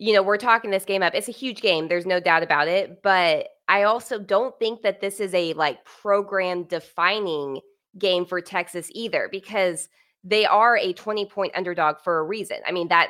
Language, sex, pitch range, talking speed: English, female, 175-205 Hz, 195 wpm